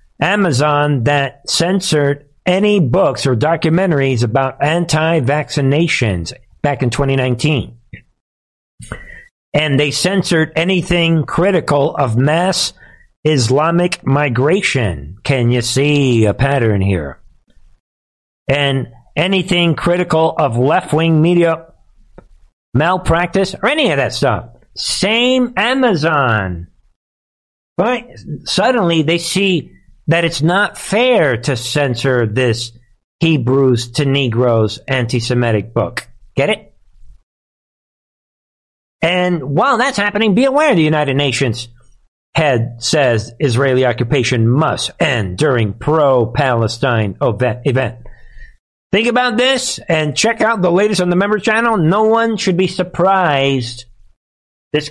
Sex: male